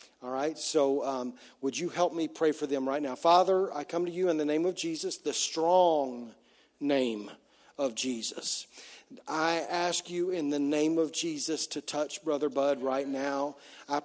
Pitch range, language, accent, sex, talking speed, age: 155-195 Hz, English, American, male, 185 wpm, 40-59